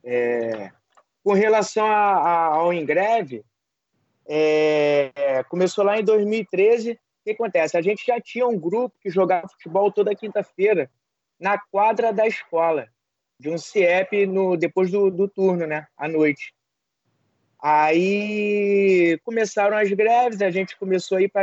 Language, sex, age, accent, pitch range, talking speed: Portuguese, male, 20-39, Brazilian, 185-240 Hz, 145 wpm